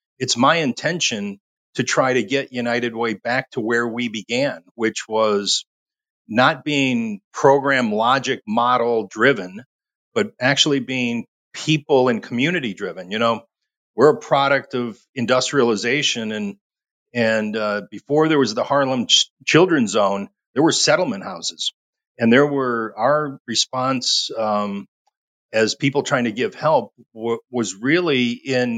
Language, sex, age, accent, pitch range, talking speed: English, male, 40-59, American, 115-140 Hz, 140 wpm